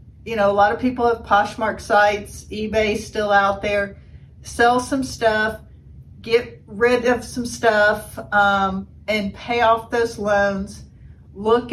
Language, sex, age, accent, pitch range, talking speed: English, female, 40-59, American, 205-245 Hz, 145 wpm